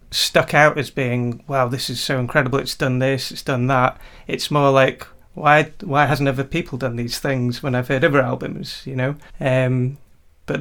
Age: 30-49